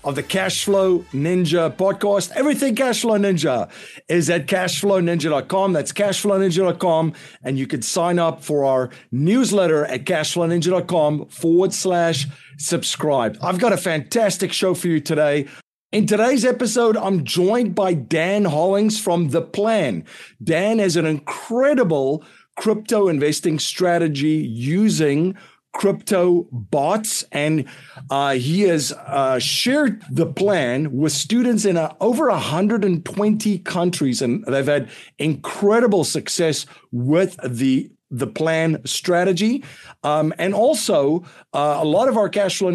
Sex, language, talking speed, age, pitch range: male, English, 125 wpm, 50-69, 145-195 Hz